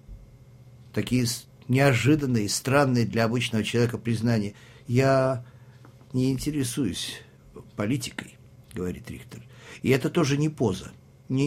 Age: 50-69